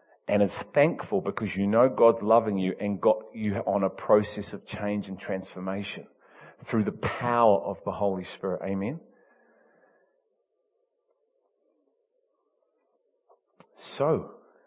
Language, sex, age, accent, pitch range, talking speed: English, male, 30-49, Australian, 100-120 Hz, 115 wpm